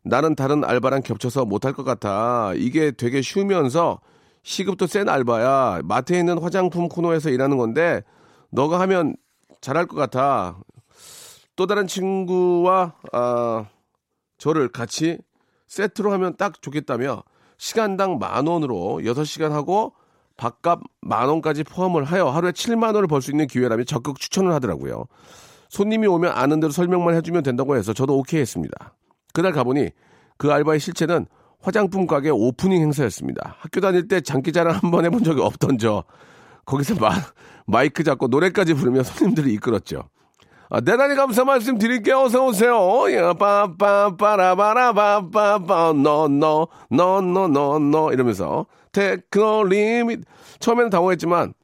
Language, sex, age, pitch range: Korean, male, 40-59, 135-195 Hz